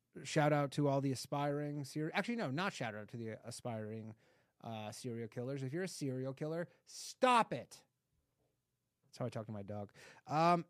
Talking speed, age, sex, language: 180 wpm, 30-49, male, English